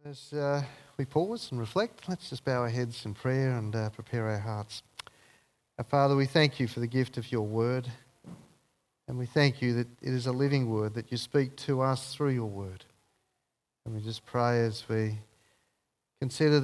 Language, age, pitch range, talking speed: English, 40-59, 110-140 Hz, 195 wpm